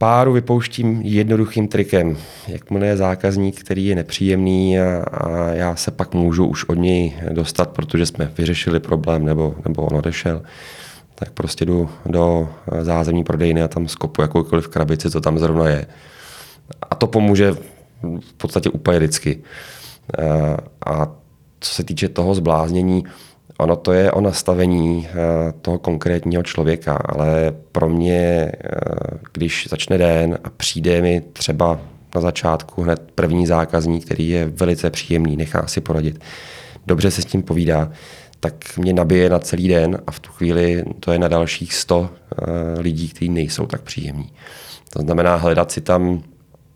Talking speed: 145 wpm